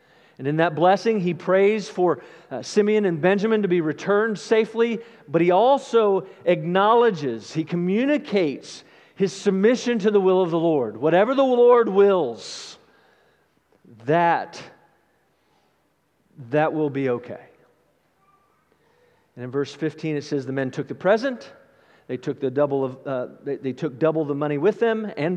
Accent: American